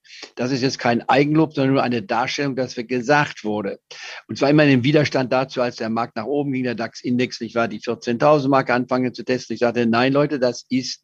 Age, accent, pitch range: 50-69, German, 120-145 Hz